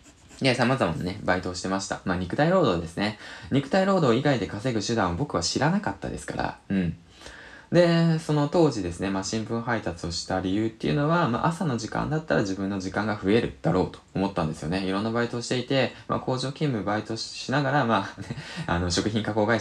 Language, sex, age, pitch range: Japanese, male, 20-39, 90-130 Hz